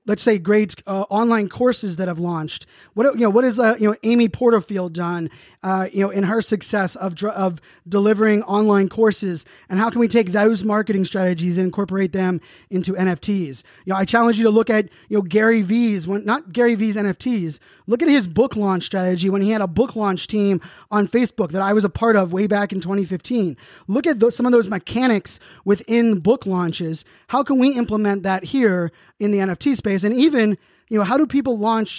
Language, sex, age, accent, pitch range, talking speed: English, male, 20-39, American, 185-225 Hz, 215 wpm